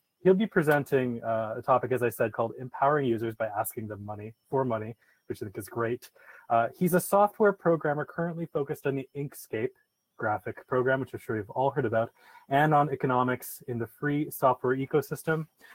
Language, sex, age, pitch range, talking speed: English, male, 20-39, 115-135 Hz, 190 wpm